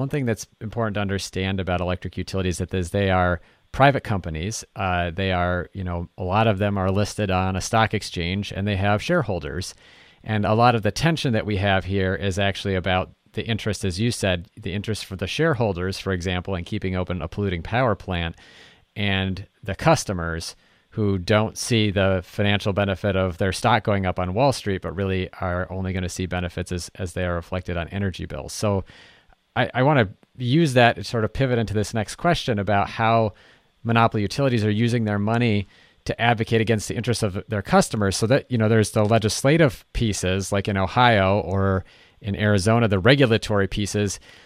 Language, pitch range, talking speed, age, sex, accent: English, 95-115 Hz, 195 wpm, 40-59, male, American